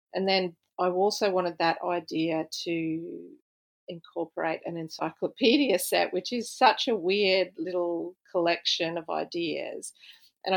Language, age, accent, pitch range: English, 40-59, Australian, 165-190 Hz